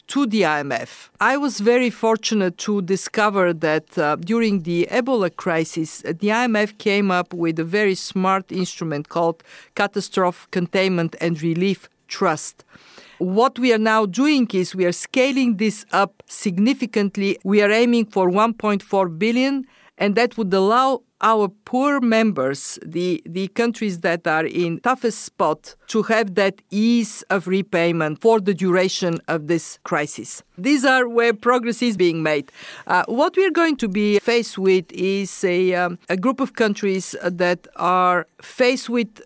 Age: 50-69